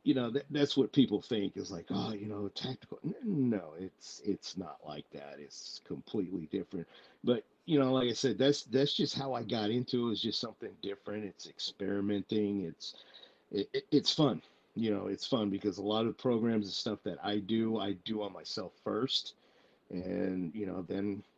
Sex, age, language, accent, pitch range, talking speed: male, 50-69, English, American, 100-120 Hz, 195 wpm